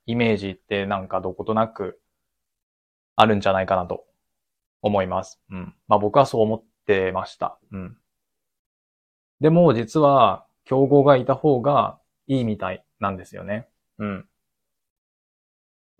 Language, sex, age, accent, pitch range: Japanese, male, 20-39, native, 105-135 Hz